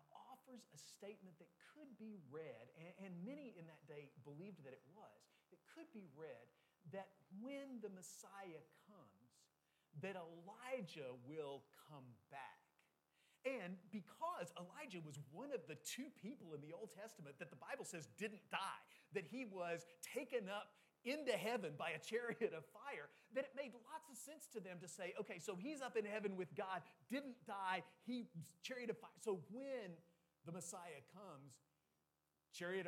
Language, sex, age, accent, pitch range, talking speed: English, male, 40-59, American, 150-225 Hz, 170 wpm